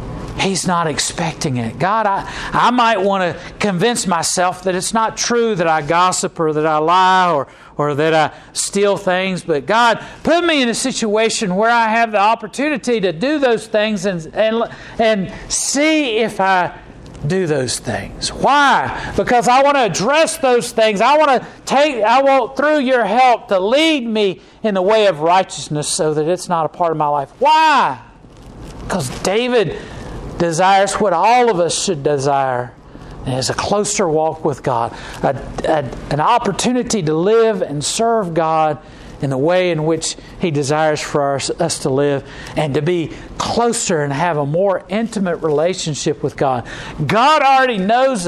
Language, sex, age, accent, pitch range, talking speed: English, male, 50-69, American, 150-220 Hz, 170 wpm